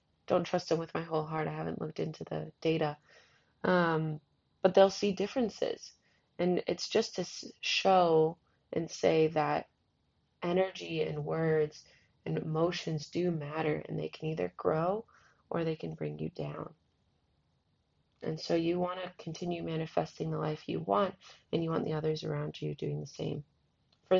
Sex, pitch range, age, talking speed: female, 150-195 Hz, 30-49, 165 wpm